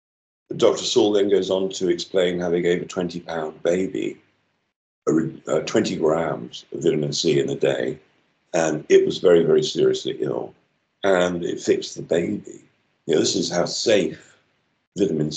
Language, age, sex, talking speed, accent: English, 50-69, male, 160 wpm, British